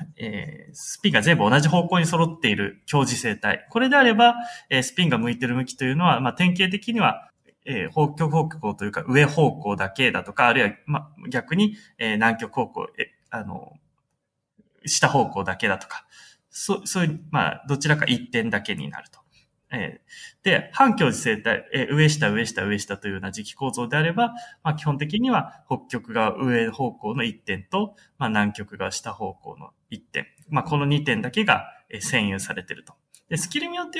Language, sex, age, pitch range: Japanese, male, 20-39, 120-195 Hz